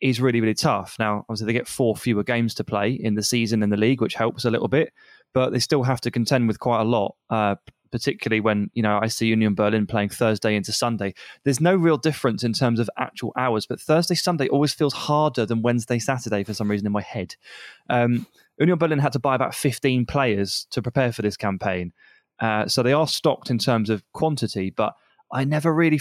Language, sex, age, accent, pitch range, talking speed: English, male, 20-39, British, 110-140 Hz, 230 wpm